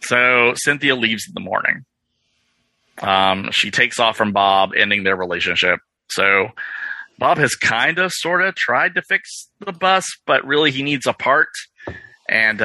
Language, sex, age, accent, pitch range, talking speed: English, male, 30-49, American, 105-140 Hz, 160 wpm